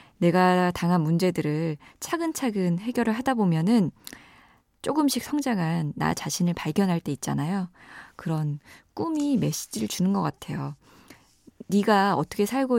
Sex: female